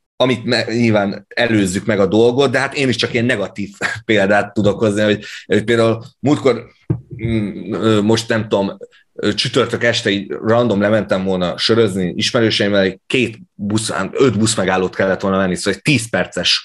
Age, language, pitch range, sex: 30-49, Hungarian, 105-125 Hz, male